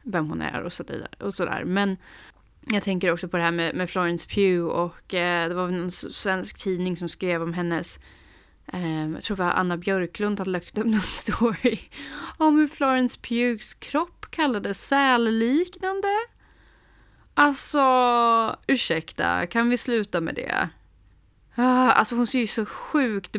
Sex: female